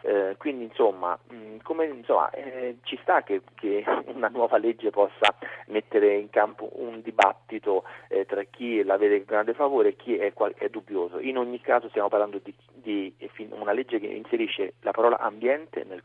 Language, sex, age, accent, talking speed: Italian, male, 40-59, native, 185 wpm